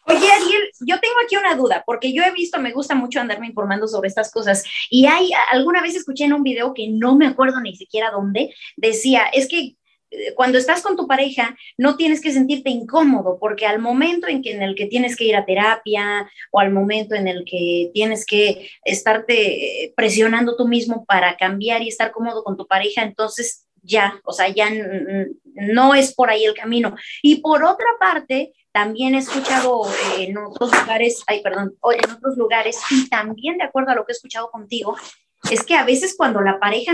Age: 30-49